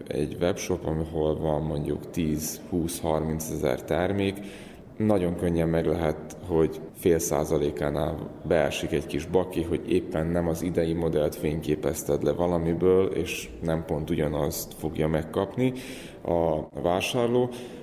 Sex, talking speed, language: male, 120 wpm, Hungarian